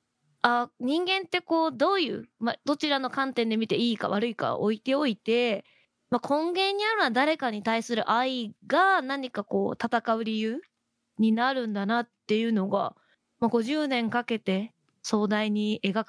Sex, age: female, 20-39